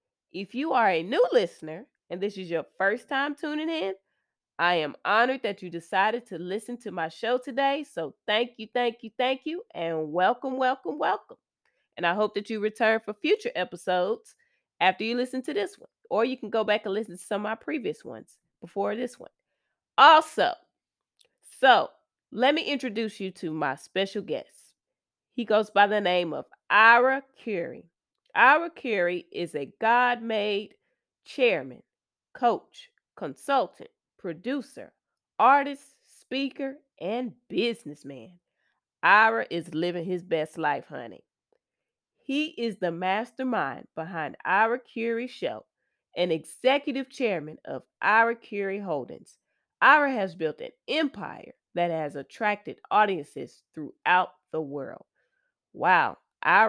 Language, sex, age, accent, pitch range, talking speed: English, female, 20-39, American, 185-270 Hz, 140 wpm